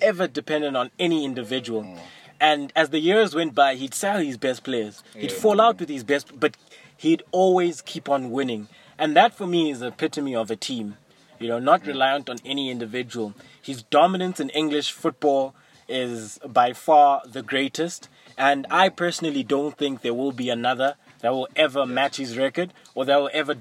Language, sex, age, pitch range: English, male, 20-39, 130-155 Hz